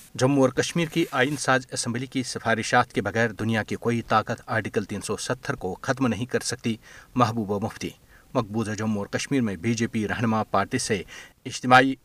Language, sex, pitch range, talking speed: Urdu, male, 110-135 Hz, 180 wpm